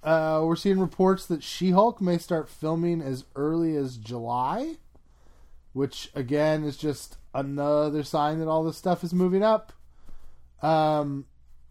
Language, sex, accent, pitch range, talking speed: English, male, American, 125-165 Hz, 140 wpm